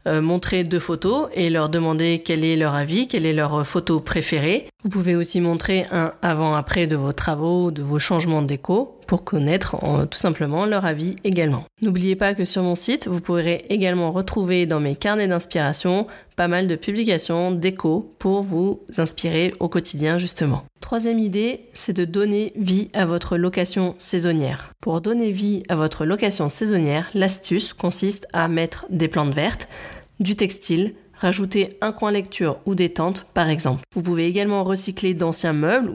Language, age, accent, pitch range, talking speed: French, 30-49, French, 160-190 Hz, 170 wpm